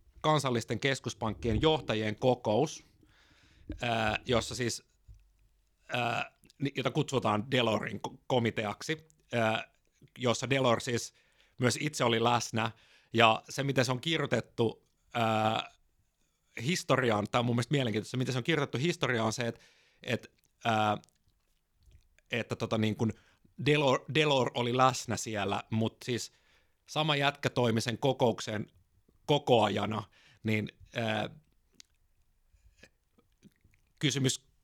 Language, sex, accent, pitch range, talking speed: Finnish, male, native, 110-135 Hz, 95 wpm